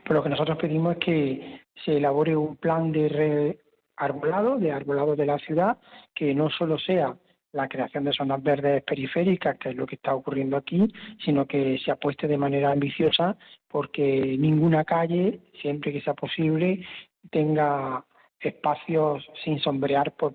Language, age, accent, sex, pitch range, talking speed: Spanish, 40-59, Spanish, male, 140-165 Hz, 155 wpm